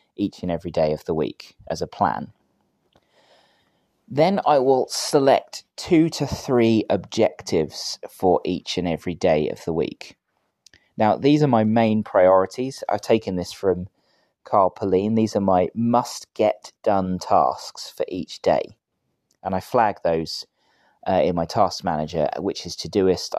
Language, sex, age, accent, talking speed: English, male, 20-39, British, 150 wpm